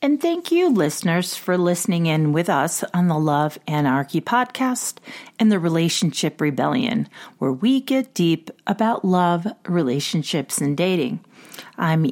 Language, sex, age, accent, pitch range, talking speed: English, female, 40-59, American, 165-235 Hz, 140 wpm